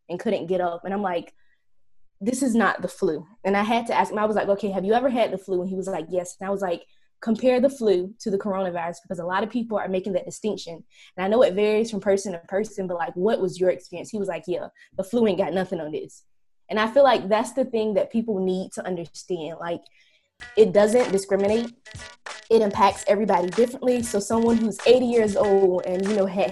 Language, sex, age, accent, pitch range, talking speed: English, female, 20-39, American, 185-220 Hz, 245 wpm